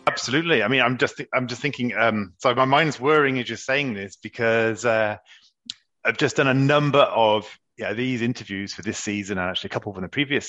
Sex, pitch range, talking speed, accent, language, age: male, 110-135 Hz, 225 wpm, British, English, 30-49